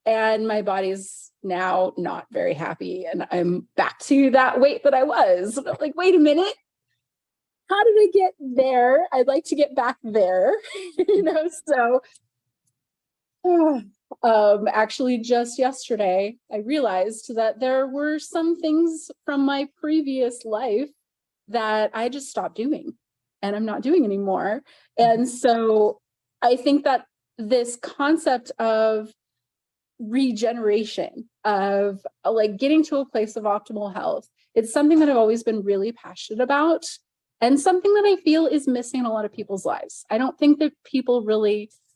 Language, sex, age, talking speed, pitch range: English, female, 30-49, 150 wpm, 215-290 Hz